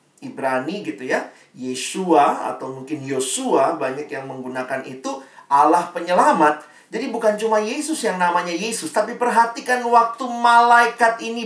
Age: 40-59